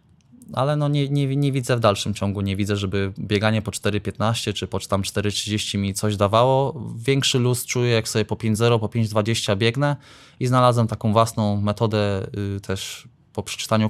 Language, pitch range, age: Polish, 105-125 Hz, 20-39